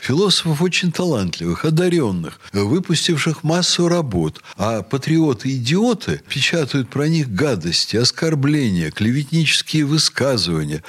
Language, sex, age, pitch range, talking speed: Russian, male, 60-79, 110-165 Hz, 90 wpm